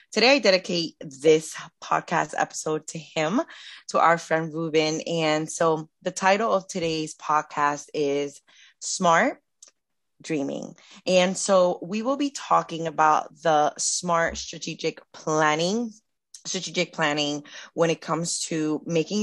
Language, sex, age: English, female, 20-39